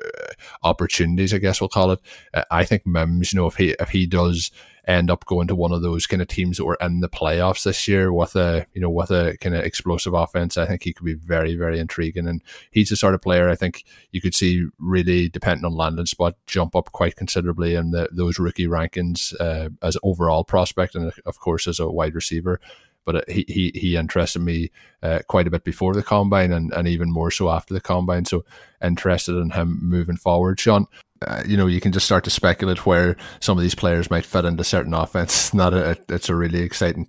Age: 20-39